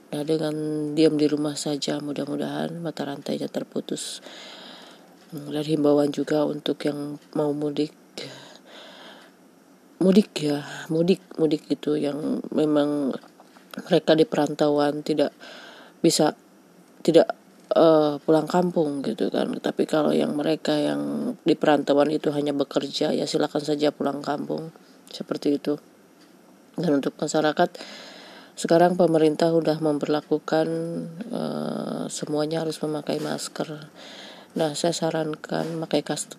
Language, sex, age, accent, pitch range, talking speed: Indonesian, female, 20-39, native, 145-160 Hz, 115 wpm